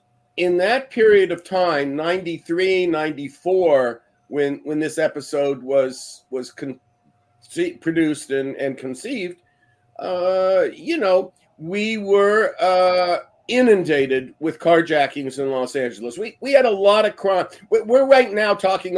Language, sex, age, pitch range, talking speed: English, male, 50-69, 145-190 Hz, 130 wpm